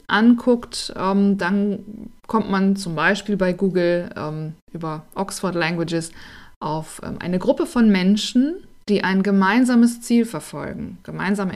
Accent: German